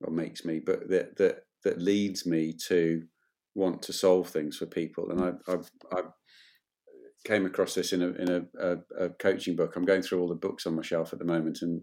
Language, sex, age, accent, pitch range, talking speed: English, male, 40-59, British, 85-95 Hz, 215 wpm